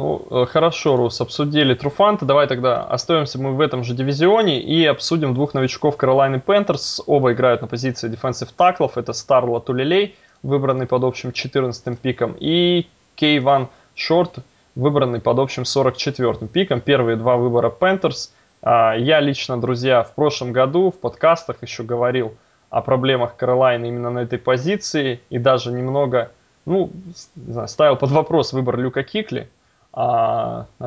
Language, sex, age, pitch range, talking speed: Russian, male, 20-39, 120-145 Hz, 145 wpm